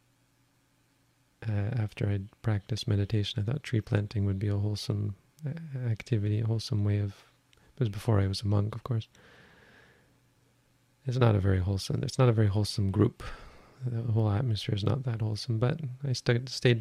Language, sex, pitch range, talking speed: English, male, 105-125 Hz, 175 wpm